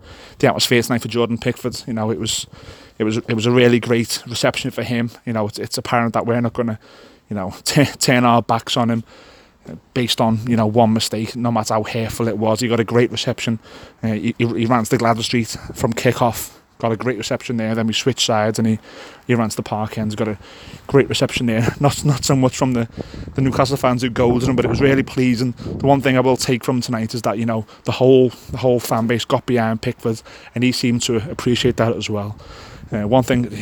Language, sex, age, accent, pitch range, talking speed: English, male, 20-39, British, 115-130 Hz, 245 wpm